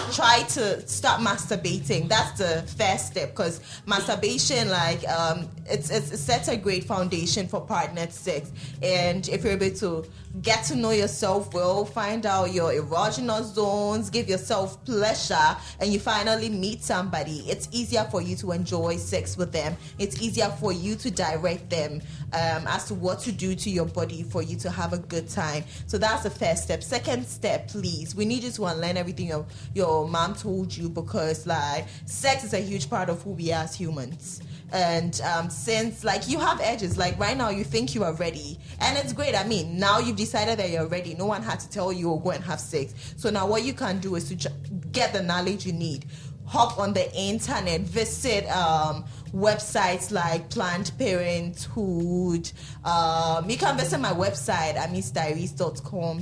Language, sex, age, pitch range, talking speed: English, female, 20-39, 160-200 Hz, 190 wpm